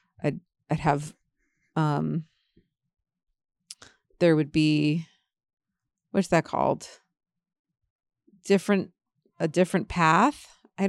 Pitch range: 155-190 Hz